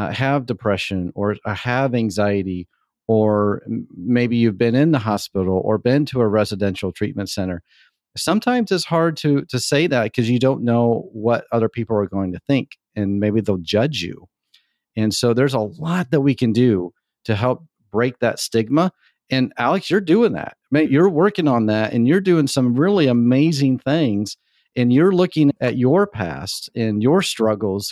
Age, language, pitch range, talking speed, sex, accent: 40-59, English, 105-135 Hz, 175 wpm, male, American